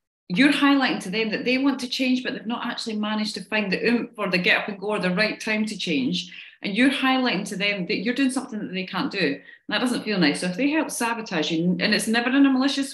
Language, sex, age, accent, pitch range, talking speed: English, female, 30-49, British, 180-245 Hz, 280 wpm